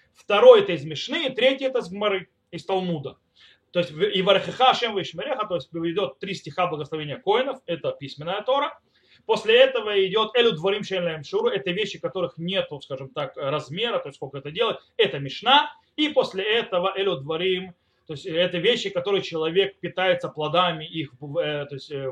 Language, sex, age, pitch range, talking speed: Russian, male, 30-49, 160-250 Hz, 155 wpm